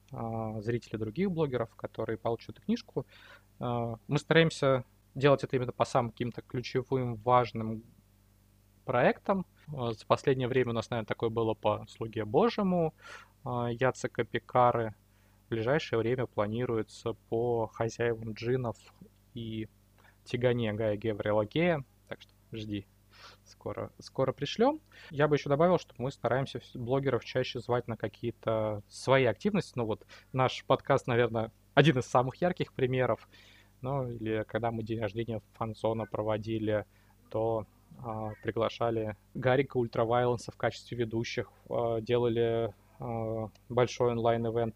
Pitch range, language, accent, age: 105-125 Hz, Russian, native, 20-39